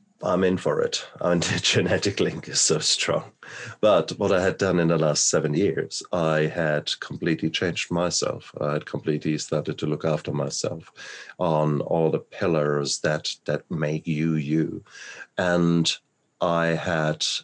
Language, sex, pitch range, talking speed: English, male, 75-90 Hz, 160 wpm